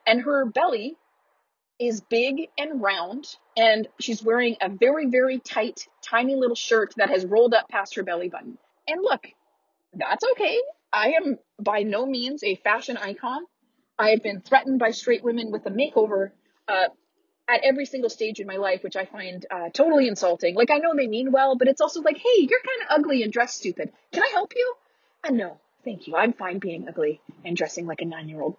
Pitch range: 200-290 Hz